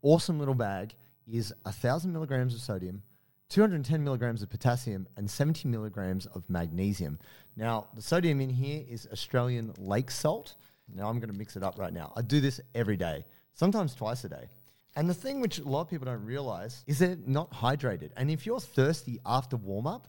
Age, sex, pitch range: 30-49, male, 105-140 Hz